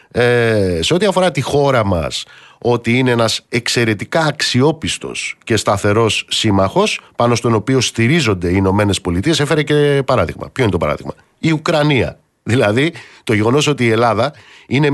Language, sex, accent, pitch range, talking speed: Greek, male, native, 105-160 Hz, 150 wpm